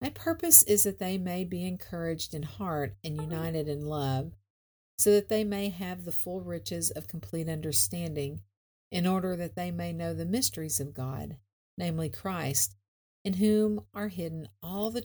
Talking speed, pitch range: 170 wpm, 130-180 Hz